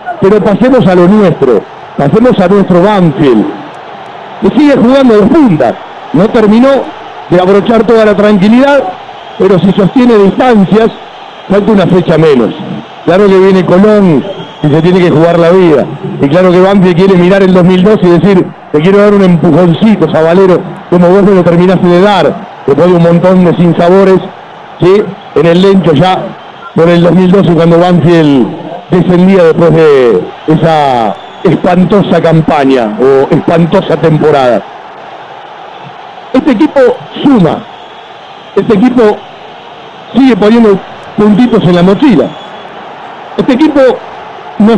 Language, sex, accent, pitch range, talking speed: Spanish, male, Argentinian, 175-225 Hz, 140 wpm